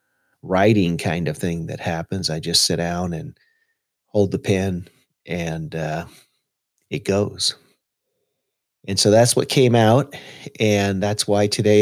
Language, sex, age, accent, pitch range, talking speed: English, male, 40-59, American, 105-140 Hz, 140 wpm